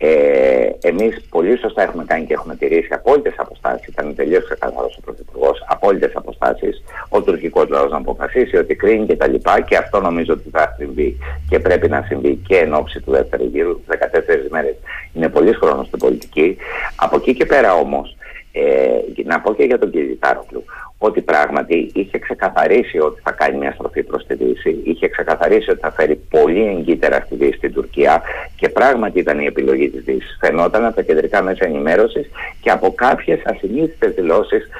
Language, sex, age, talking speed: Greek, male, 50-69, 180 wpm